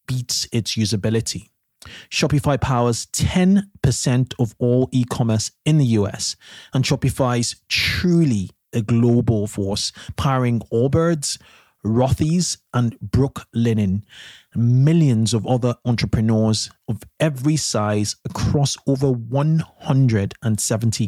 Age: 30-49